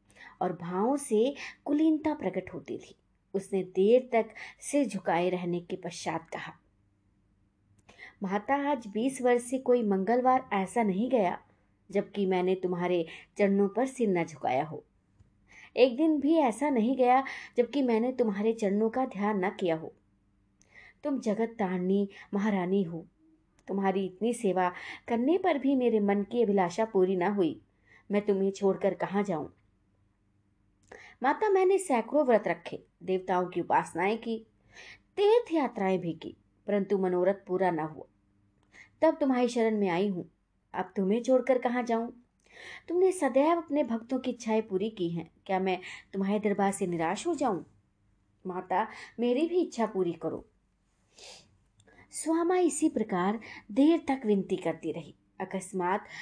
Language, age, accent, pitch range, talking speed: Hindi, 20-39, native, 180-250 Hz, 145 wpm